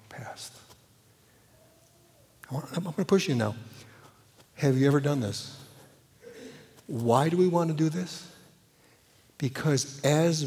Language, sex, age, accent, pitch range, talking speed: English, male, 60-79, American, 135-205 Hz, 115 wpm